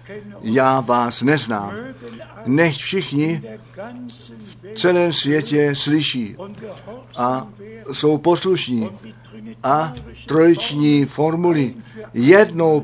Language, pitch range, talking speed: Czech, 120-155 Hz, 75 wpm